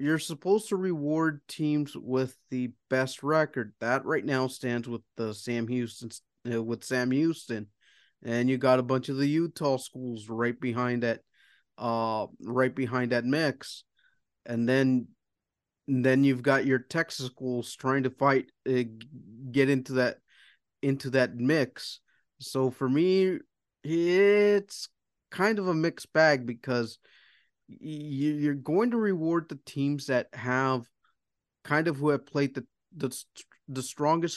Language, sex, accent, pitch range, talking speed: English, male, American, 125-150 Hz, 145 wpm